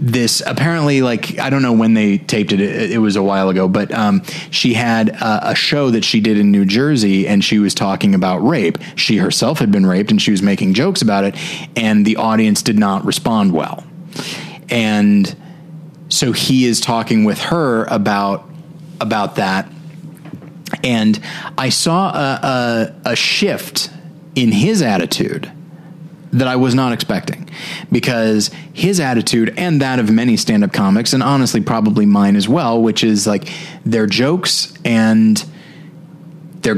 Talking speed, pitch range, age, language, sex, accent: 165 wpm, 110-165 Hz, 30-49, English, male, American